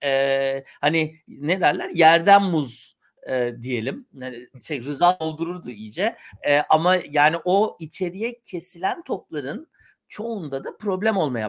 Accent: native